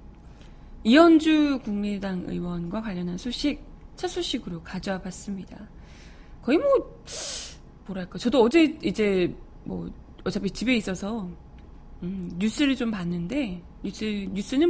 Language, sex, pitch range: Korean, female, 185-270 Hz